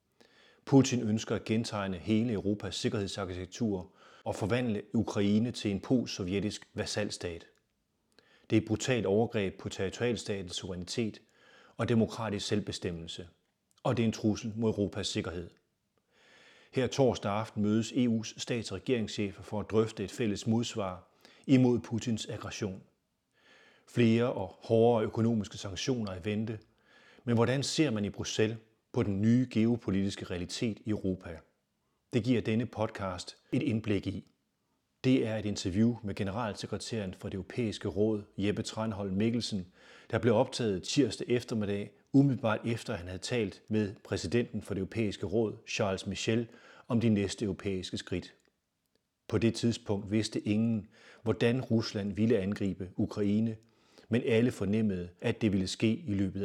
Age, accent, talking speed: 30-49, native, 140 wpm